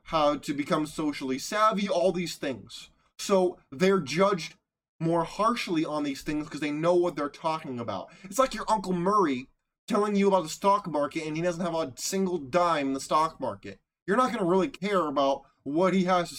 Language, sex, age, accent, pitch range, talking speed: English, male, 20-39, American, 155-195 Hz, 200 wpm